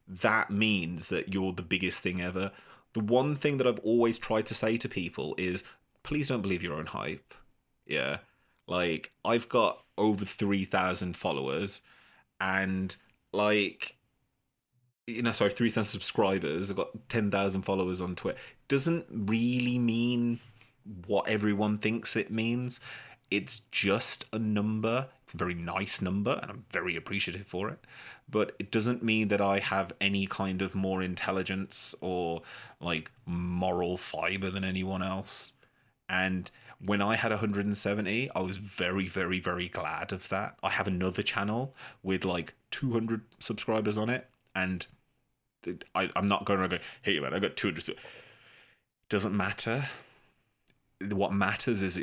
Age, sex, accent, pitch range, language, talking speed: 20-39, male, British, 95-120 Hz, English, 150 wpm